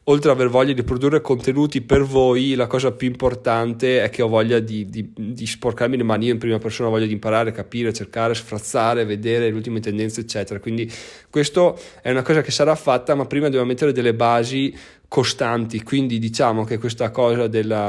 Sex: male